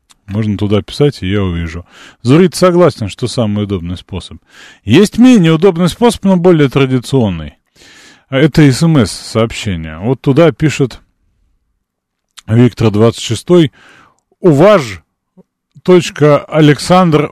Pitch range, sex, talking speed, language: 100-145 Hz, male, 105 wpm, Russian